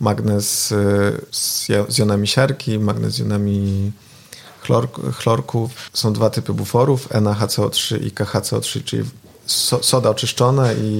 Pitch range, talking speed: 105-130 Hz, 120 wpm